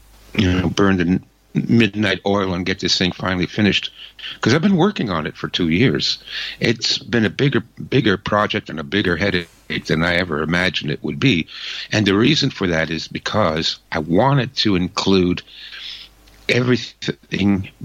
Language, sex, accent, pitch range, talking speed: English, male, American, 85-105 Hz, 170 wpm